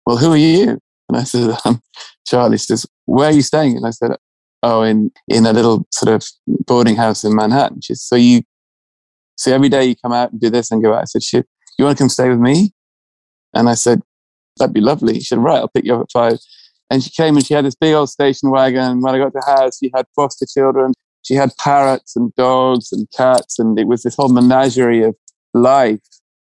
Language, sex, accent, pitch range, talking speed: English, male, British, 115-135 Hz, 235 wpm